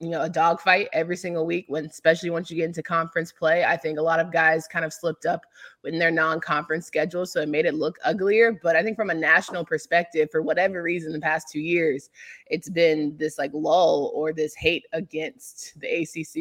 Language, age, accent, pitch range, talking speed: English, 20-39, American, 160-180 Hz, 220 wpm